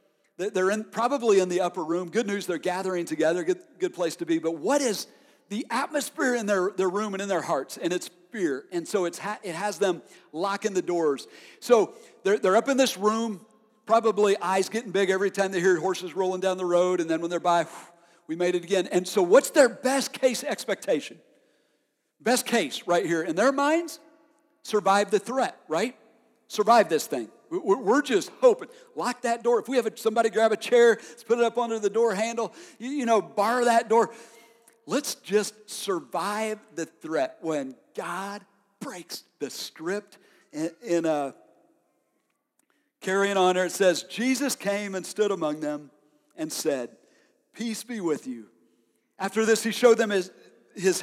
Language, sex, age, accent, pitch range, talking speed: English, male, 50-69, American, 180-235 Hz, 180 wpm